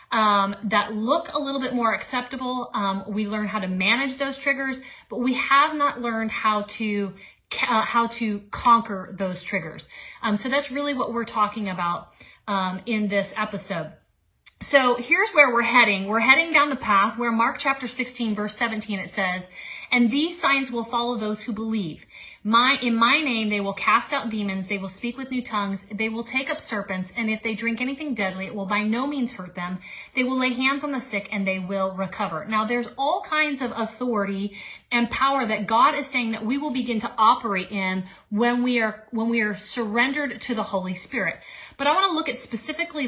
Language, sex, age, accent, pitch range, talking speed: English, female, 30-49, American, 210-255 Hz, 205 wpm